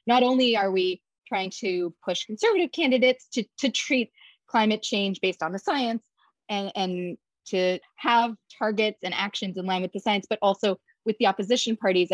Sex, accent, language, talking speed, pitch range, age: female, American, English, 180 wpm, 185-240 Hz, 20-39